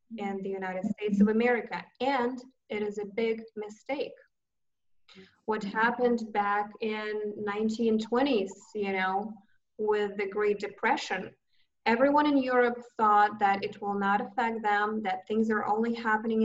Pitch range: 200-230 Hz